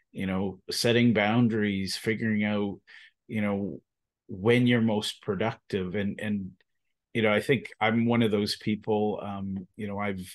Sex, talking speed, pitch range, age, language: male, 155 wpm, 100-115 Hz, 30-49, English